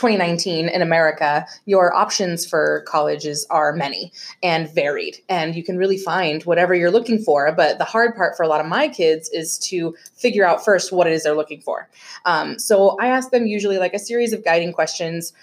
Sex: female